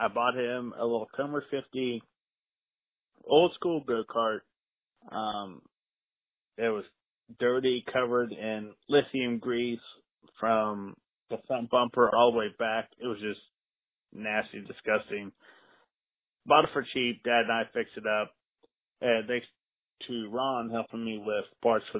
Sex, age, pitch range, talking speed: male, 30-49, 110-130 Hz, 140 wpm